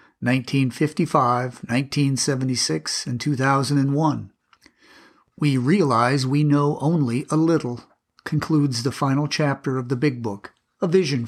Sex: male